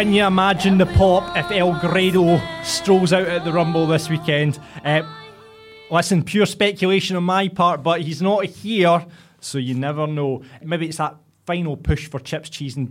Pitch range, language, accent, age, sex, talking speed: 145-185 Hz, English, British, 20-39, male, 175 wpm